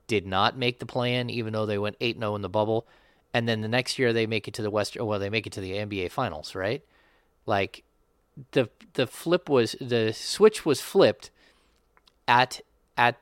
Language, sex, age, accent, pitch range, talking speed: English, male, 30-49, American, 105-130 Hz, 205 wpm